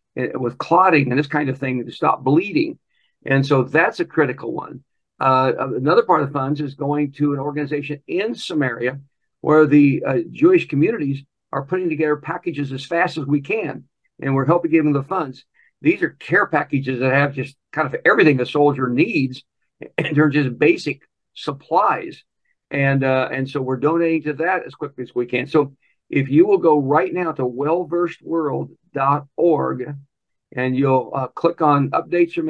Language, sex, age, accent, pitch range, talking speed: English, male, 60-79, American, 130-160 Hz, 185 wpm